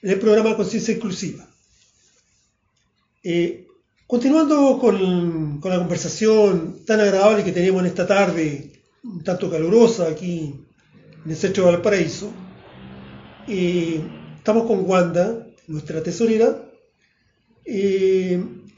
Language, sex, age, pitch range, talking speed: Spanish, male, 40-59, 175-230 Hz, 110 wpm